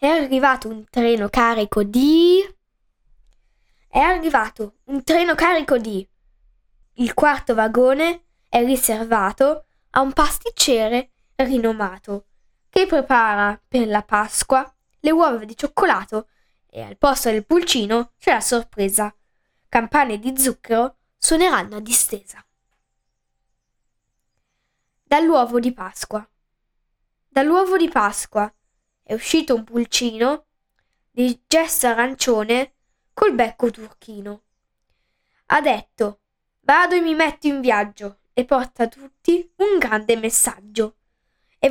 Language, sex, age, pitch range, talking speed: Italian, female, 10-29, 215-290 Hz, 110 wpm